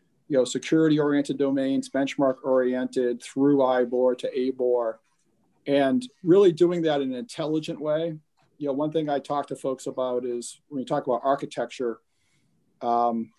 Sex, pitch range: male, 135-160 Hz